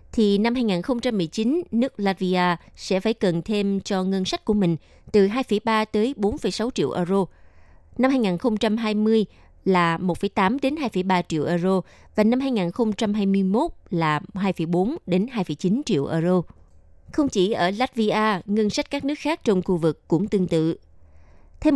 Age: 20-39